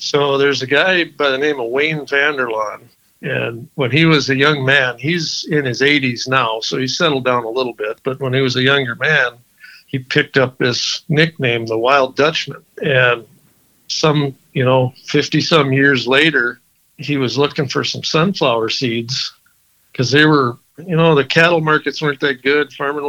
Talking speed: 180 wpm